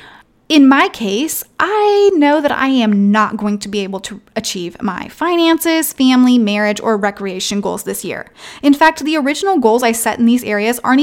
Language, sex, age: English, female, 20-39